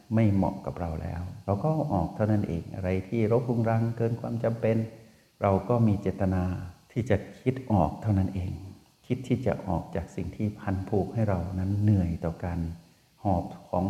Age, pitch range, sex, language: 60-79, 90-120 Hz, male, Thai